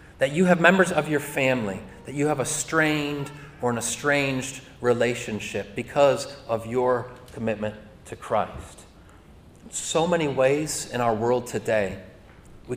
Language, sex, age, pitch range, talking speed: English, male, 30-49, 115-155 Hz, 140 wpm